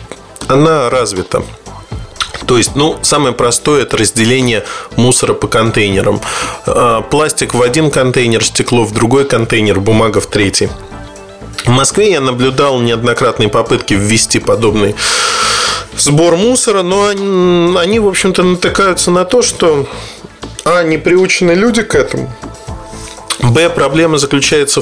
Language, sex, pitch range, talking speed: Russian, male, 120-175 Hz, 120 wpm